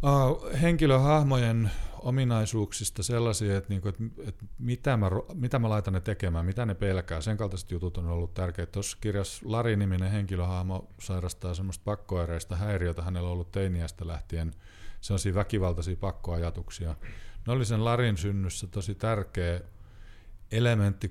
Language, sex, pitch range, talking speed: Finnish, male, 85-105 Hz, 140 wpm